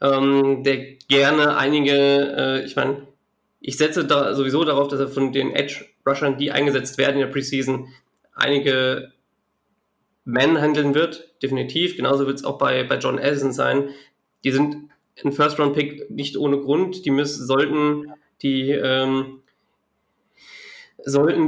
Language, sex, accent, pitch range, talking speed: German, male, German, 135-155 Hz, 145 wpm